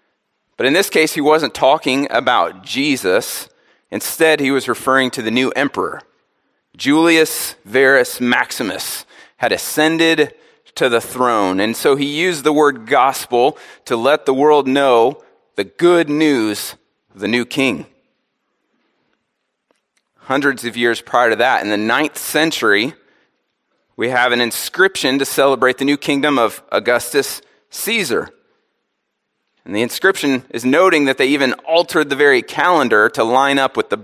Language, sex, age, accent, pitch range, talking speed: English, male, 30-49, American, 125-150 Hz, 150 wpm